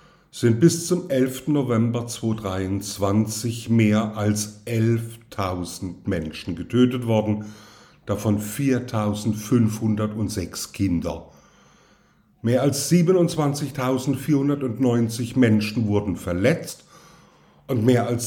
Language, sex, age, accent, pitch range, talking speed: German, male, 50-69, German, 105-140 Hz, 80 wpm